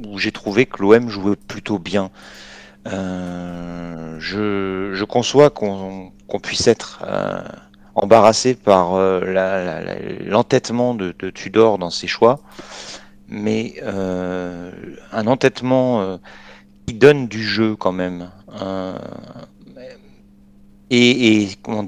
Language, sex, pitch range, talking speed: French, male, 90-110 Hz, 125 wpm